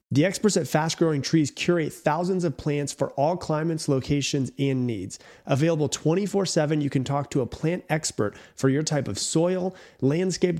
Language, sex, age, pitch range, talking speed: English, male, 30-49, 130-160 Hz, 175 wpm